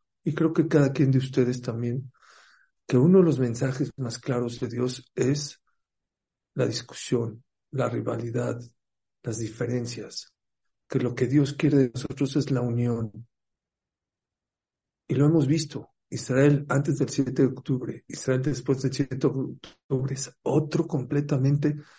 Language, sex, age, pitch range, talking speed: English, male, 50-69, 125-145 Hz, 145 wpm